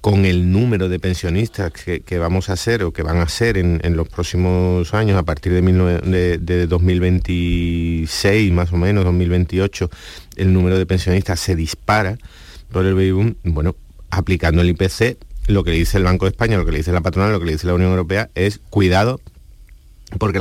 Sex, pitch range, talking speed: male, 85-100 Hz, 205 wpm